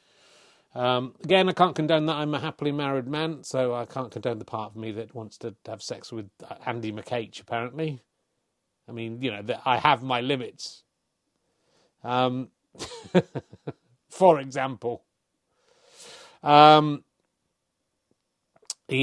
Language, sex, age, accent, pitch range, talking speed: English, male, 40-59, British, 120-170 Hz, 130 wpm